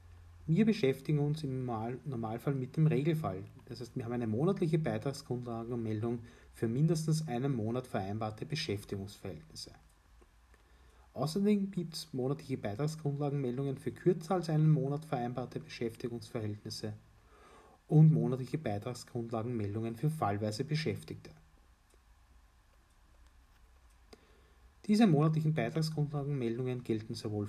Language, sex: German, male